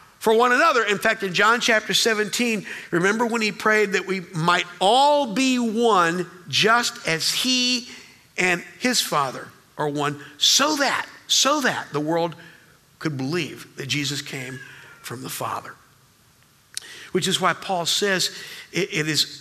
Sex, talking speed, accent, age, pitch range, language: male, 150 wpm, American, 50-69, 155-200 Hz, English